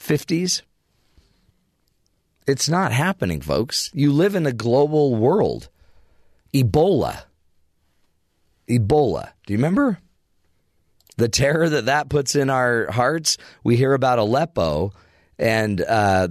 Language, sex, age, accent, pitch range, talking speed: English, male, 40-59, American, 90-130 Hz, 110 wpm